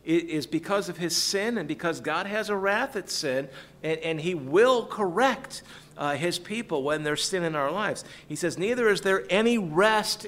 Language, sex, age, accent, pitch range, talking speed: English, male, 50-69, American, 145-200 Hz, 200 wpm